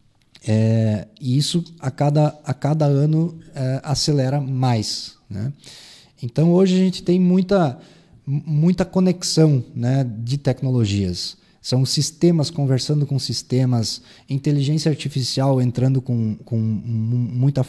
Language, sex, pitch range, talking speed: Portuguese, male, 125-160 Hz, 105 wpm